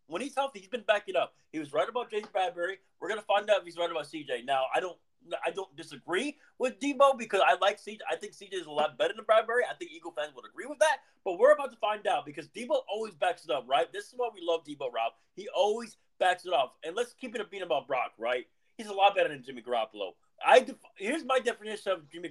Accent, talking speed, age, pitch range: American, 265 wpm, 30-49, 160-250 Hz